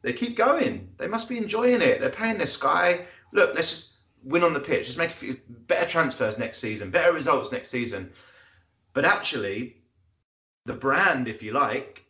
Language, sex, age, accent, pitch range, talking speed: English, male, 30-49, British, 125-175 Hz, 190 wpm